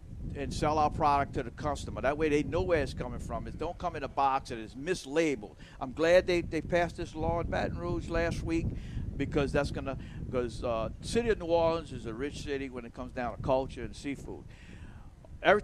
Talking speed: 225 wpm